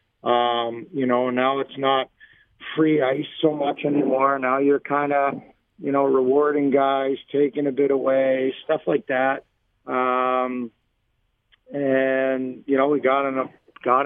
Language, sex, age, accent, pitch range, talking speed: English, male, 50-69, American, 120-135 Hz, 145 wpm